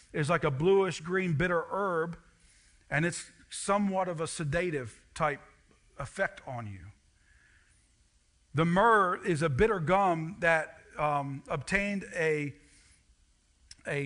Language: English